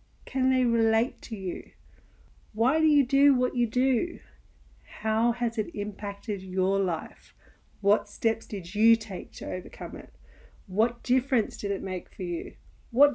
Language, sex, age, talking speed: English, female, 40-59, 155 wpm